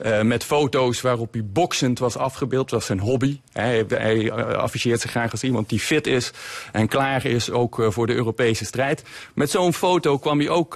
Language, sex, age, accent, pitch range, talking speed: Dutch, male, 40-59, Dutch, 120-150 Hz, 205 wpm